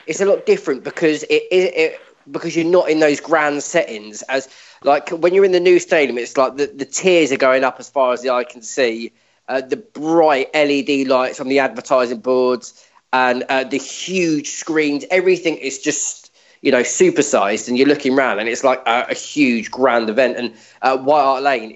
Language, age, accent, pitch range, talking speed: English, 20-39, British, 125-165 Hz, 210 wpm